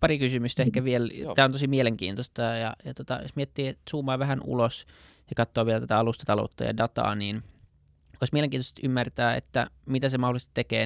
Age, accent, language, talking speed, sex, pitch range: 20-39, native, Finnish, 180 wpm, male, 105-125 Hz